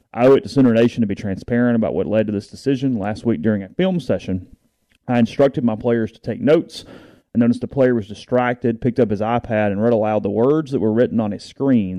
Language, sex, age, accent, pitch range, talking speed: English, male, 30-49, American, 105-125 Hz, 245 wpm